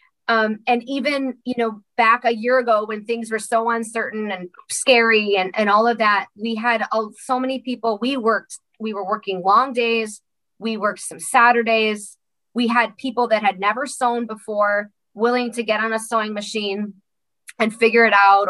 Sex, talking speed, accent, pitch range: female, 180 wpm, American, 210-255 Hz